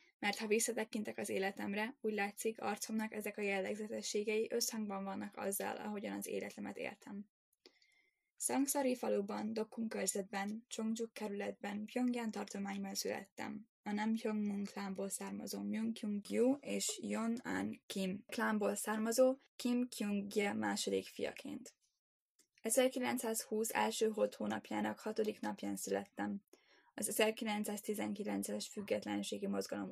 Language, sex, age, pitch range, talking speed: Hungarian, female, 10-29, 195-235 Hz, 110 wpm